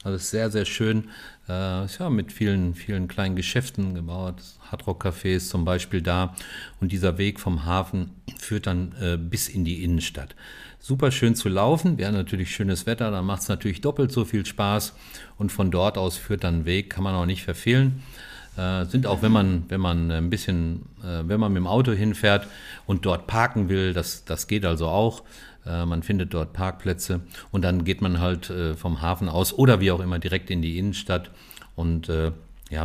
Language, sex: German, male